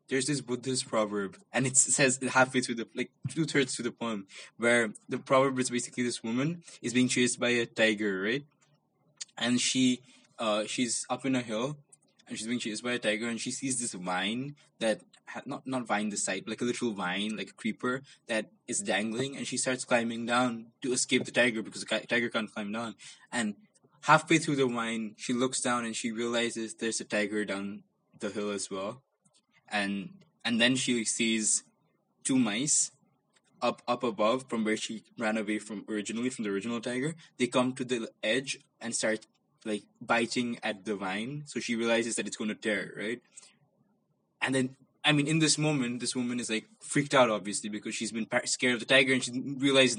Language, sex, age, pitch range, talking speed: English, male, 20-39, 110-130 Hz, 200 wpm